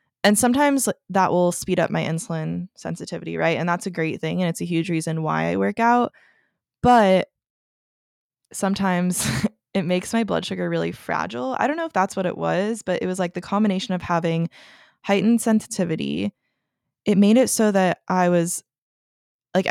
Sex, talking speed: female, 180 wpm